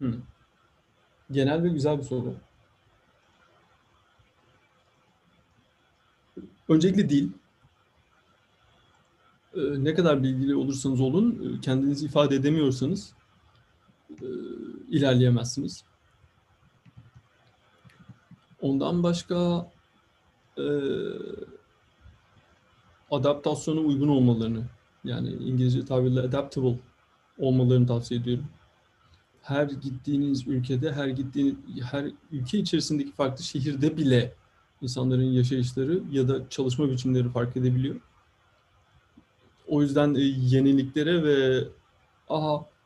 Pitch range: 125-155 Hz